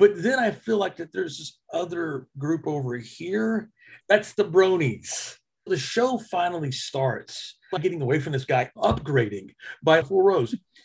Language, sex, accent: English, male, American